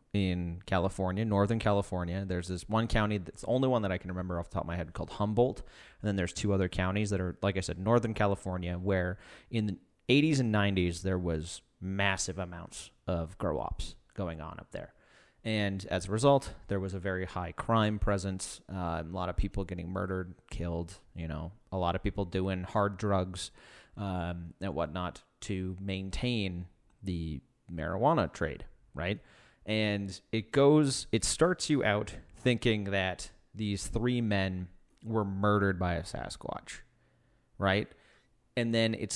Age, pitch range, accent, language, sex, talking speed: 30-49, 95-115 Hz, American, English, male, 175 wpm